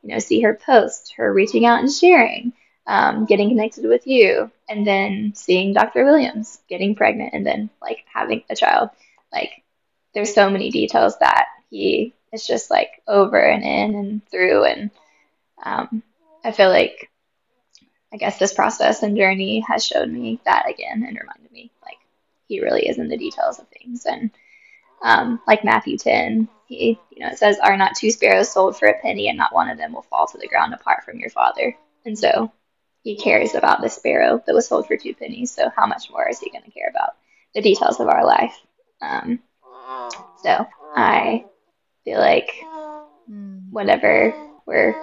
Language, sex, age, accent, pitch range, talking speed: English, female, 10-29, American, 215-335 Hz, 185 wpm